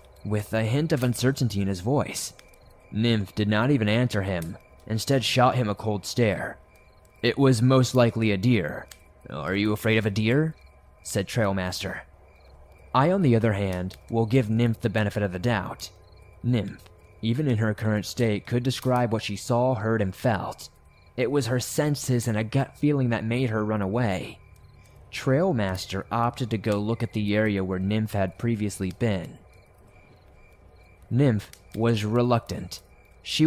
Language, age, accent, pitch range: English, 20-39, American, 100-125 Hz